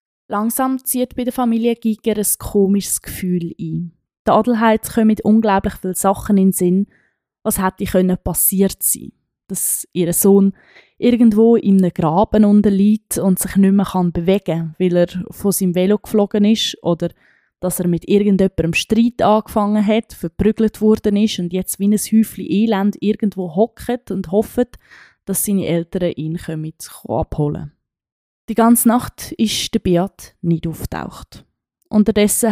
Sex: female